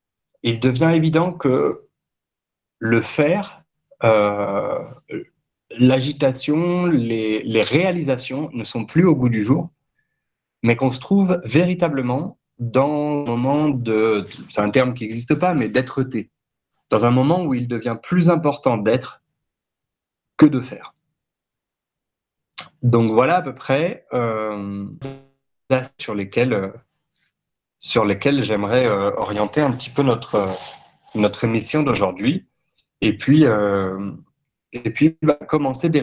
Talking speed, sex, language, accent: 125 wpm, male, French, French